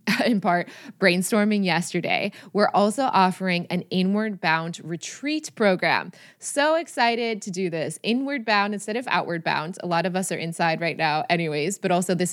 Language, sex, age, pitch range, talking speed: English, female, 20-39, 170-210 Hz, 170 wpm